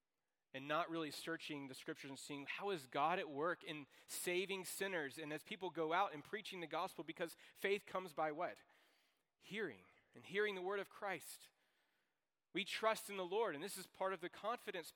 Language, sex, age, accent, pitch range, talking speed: English, male, 40-59, American, 150-195 Hz, 195 wpm